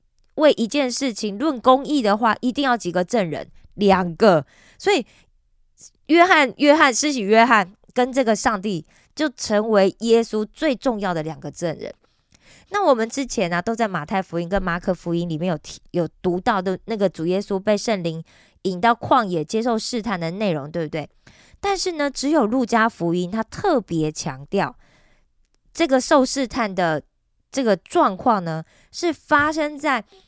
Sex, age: female, 20-39